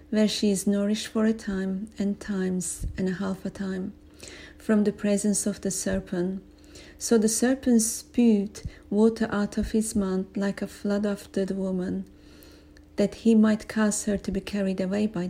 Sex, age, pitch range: female, 40-59, 185-210 Hz